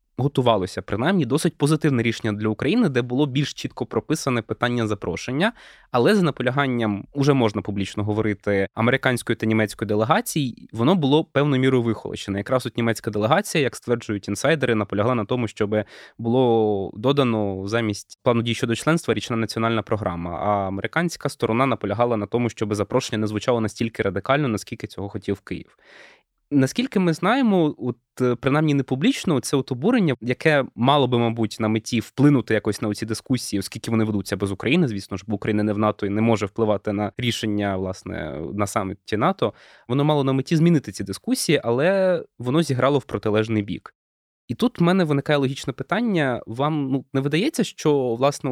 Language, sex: Ukrainian, male